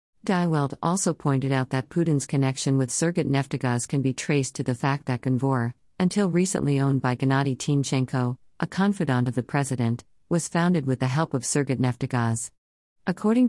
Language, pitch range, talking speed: English, 130-160 Hz, 170 wpm